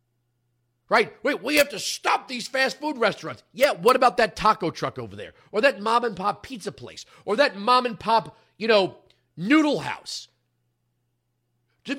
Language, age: English, 40-59